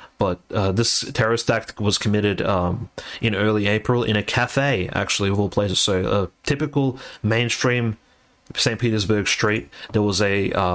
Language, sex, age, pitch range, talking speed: English, male, 30-49, 100-115 Hz, 160 wpm